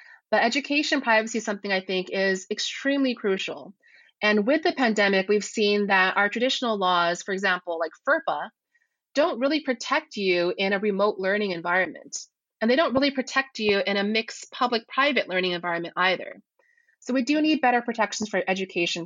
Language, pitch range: English, 190-260 Hz